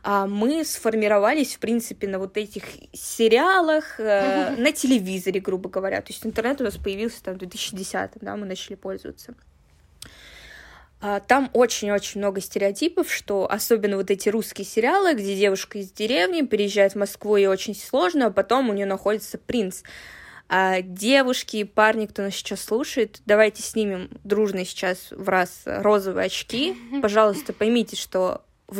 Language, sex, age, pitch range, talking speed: Russian, female, 20-39, 195-230 Hz, 150 wpm